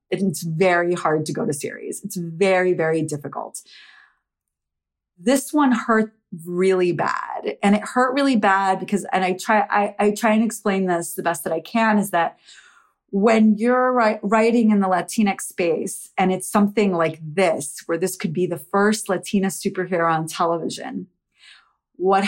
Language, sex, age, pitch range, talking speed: English, female, 30-49, 175-230 Hz, 165 wpm